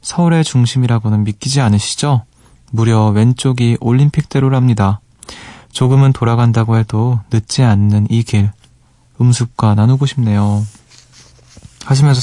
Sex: male